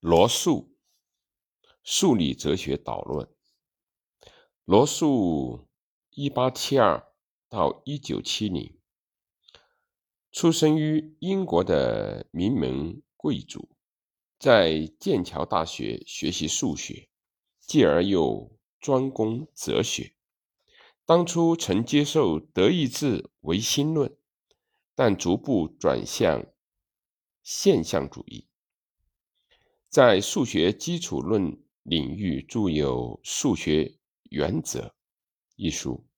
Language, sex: Chinese, male